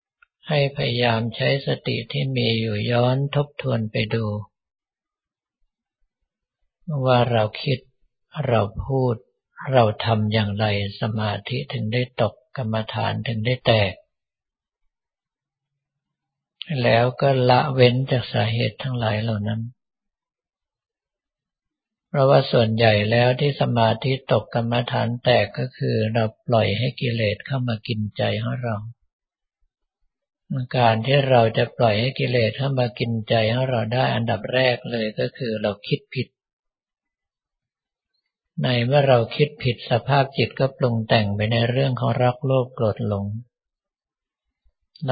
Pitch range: 110-130 Hz